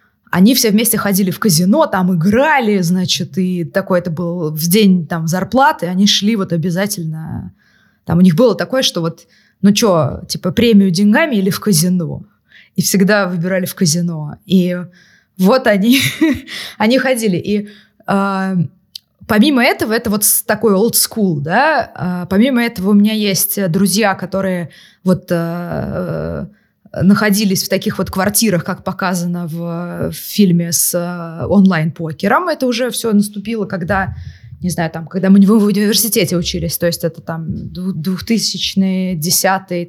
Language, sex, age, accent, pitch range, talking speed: Russian, female, 20-39, native, 175-215 Hz, 145 wpm